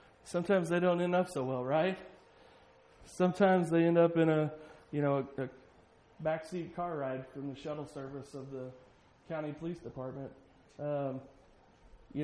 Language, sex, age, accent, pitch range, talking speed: English, male, 30-49, American, 160-225 Hz, 155 wpm